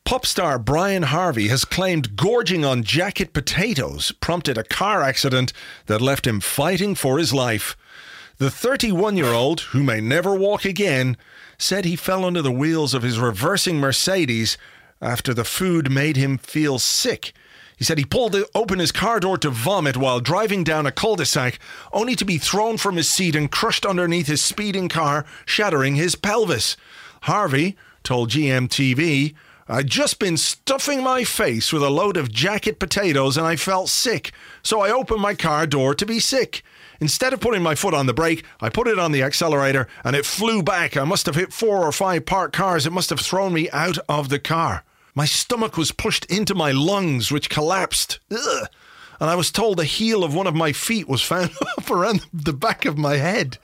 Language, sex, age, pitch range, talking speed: English, male, 40-59, 140-195 Hz, 190 wpm